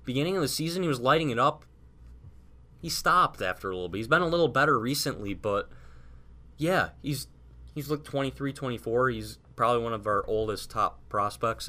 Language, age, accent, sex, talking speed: English, 20-39, American, male, 185 wpm